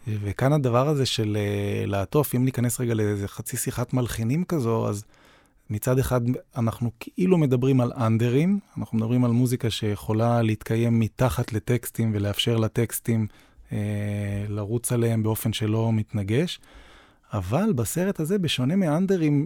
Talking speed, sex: 135 wpm, male